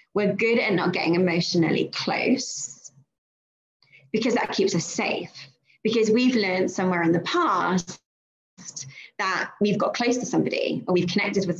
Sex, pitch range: female, 170-225 Hz